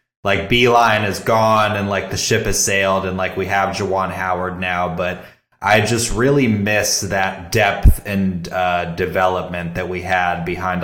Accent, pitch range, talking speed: American, 90-105 Hz, 170 wpm